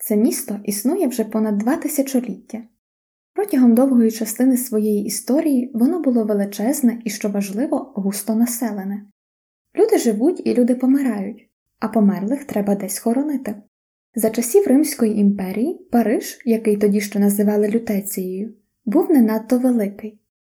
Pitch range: 210-265 Hz